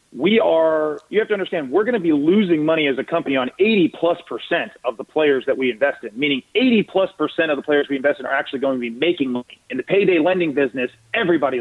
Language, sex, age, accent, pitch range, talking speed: English, male, 30-49, American, 140-185 Hz, 255 wpm